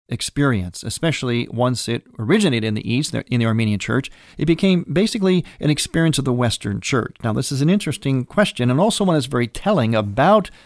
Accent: American